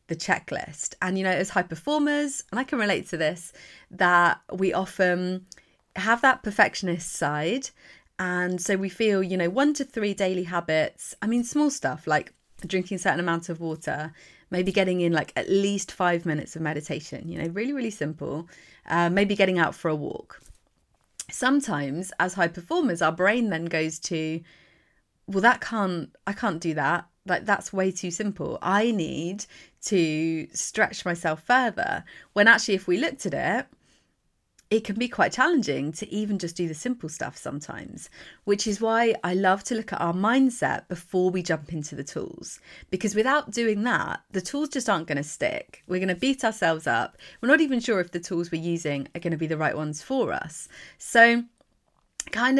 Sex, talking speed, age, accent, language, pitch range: female, 185 wpm, 30-49, British, English, 170-225 Hz